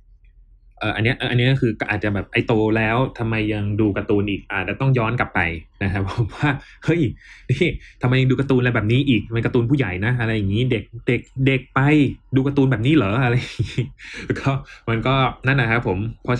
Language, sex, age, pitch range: Thai, male, 20-39, 100-130 Hz